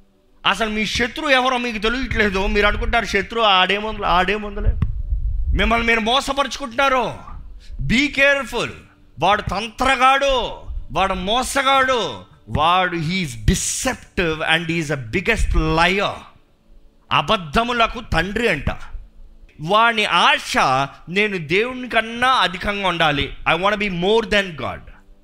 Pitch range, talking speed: 135-220 Hz, 100 wpm